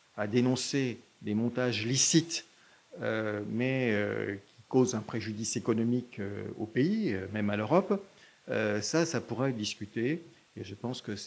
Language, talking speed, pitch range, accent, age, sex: French, 165 wpm, 110-145 Hz, French, 50-69, male